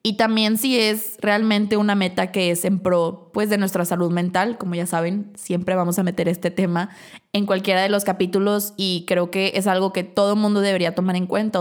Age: 20-39